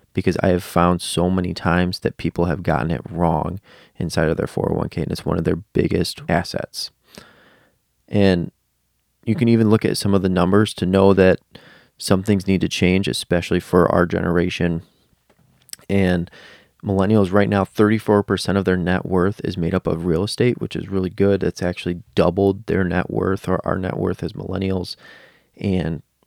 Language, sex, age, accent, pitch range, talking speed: English, male, 30-49, American, 90-105 Hz, 180 wpm